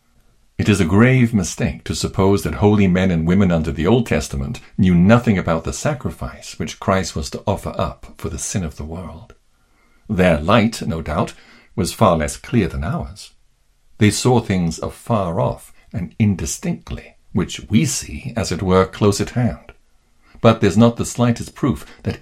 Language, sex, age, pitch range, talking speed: English, male, 60-79, 80-110 Hz, 180 wpm